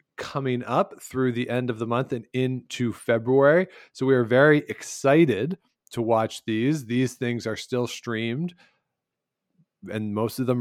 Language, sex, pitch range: English, male, 110-130 Hz